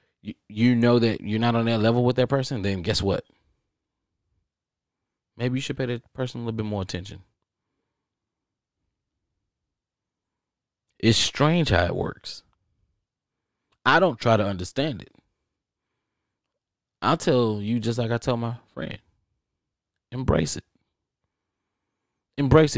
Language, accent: English, American